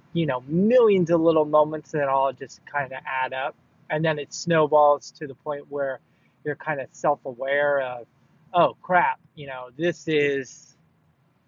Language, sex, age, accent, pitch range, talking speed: English, male, 20-39, American, 140-165 Hz, 170 wpm